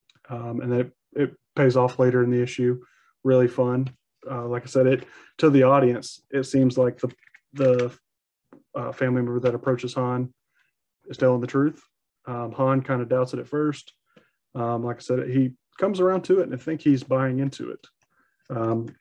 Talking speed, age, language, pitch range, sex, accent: 195 wpm, 30-49, English, 125-135 Hz, male, American